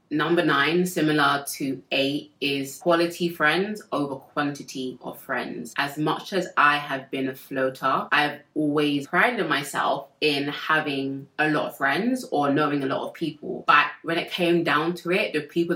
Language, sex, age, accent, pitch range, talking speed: English, female, 20-39, British, 135-155 Hz, 170 wpm